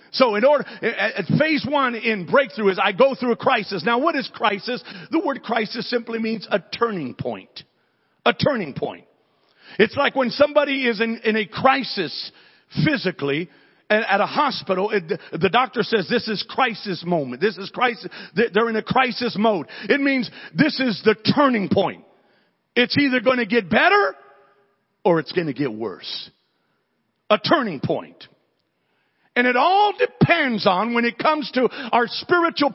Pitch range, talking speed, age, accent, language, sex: 160-255 Hz, 165 wpm, 50-69, American, English, male